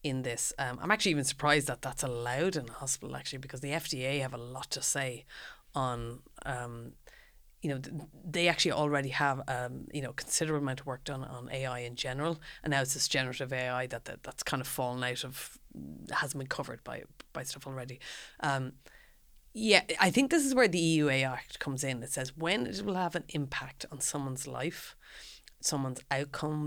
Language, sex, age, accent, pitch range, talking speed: English, female, 30-49, Irish, 125-145 Hz, 200 wpm